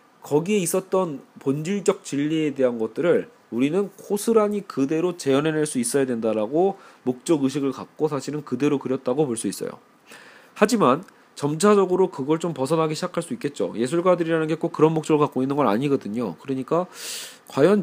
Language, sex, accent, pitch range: Korean, male, native, 140-185 Hz